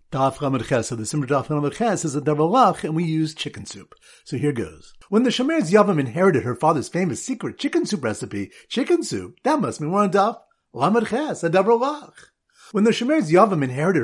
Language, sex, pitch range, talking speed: English, male, 150-230 Hz, 190 wpm